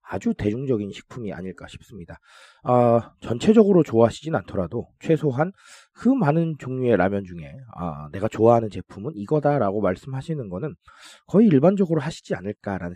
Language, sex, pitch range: Korean, male, 100-165 Hz